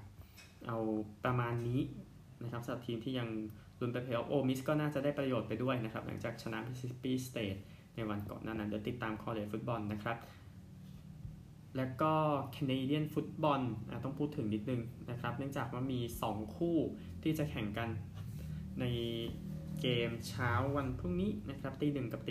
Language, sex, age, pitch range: Thai, male, 20-39, 105-135 Hz